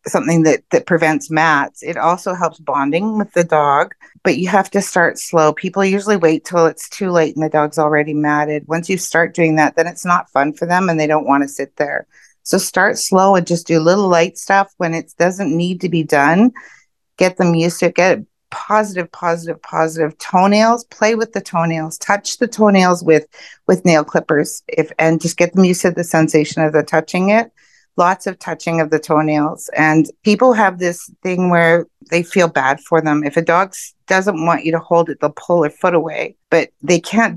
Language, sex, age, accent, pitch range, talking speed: English, female, 50-69, American, 160-195 Hz, 210 wpm